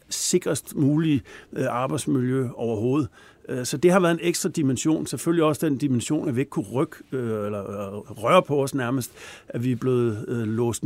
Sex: male